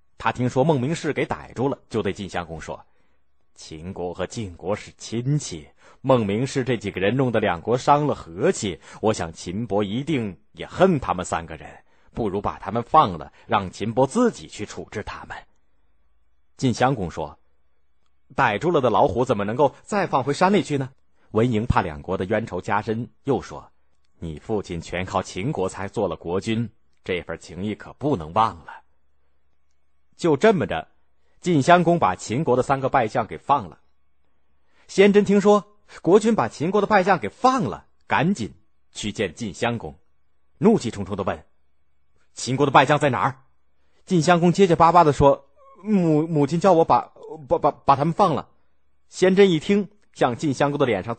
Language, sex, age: Chinese, male, 30-49